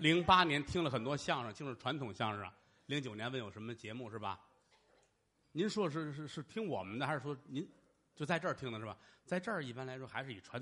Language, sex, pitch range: Chinese, male, 115-165 Hz